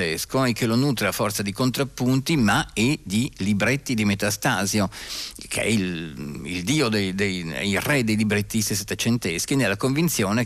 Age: 50-69